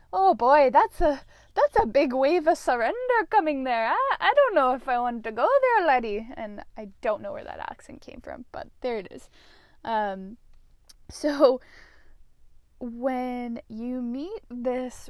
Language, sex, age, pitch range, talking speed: English, female, 10-29, 205-255 Hz, 165 wpm